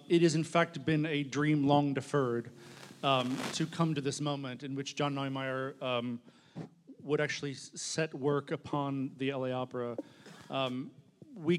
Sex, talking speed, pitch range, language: male, 140 wpm, 130-150 Hz, English